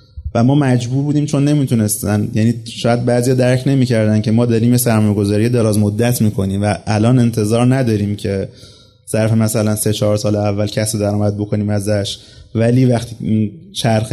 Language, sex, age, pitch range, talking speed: Persian, male, 30-49, 110-130 Hz, 155 wpm